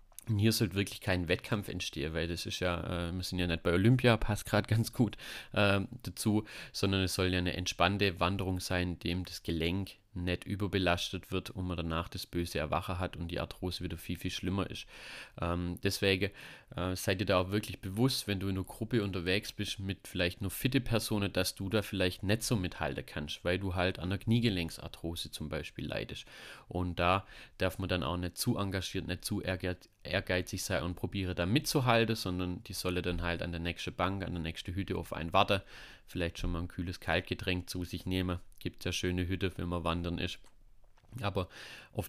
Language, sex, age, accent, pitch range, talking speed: German, male, 30-49, German, 90-100 Hz, 200 wpm